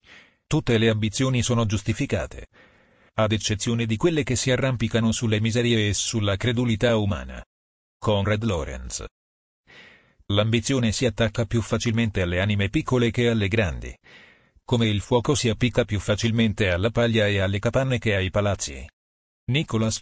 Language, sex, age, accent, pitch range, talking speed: Italian, male, 40-59, native, 90-120 Hz, 140 wpm